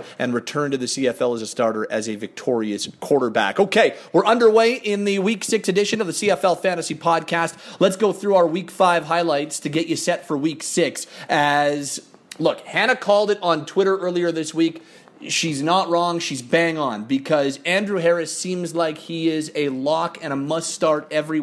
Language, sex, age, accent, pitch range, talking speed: English, male, 30-49, American, 155-185 Hz, 195 wpm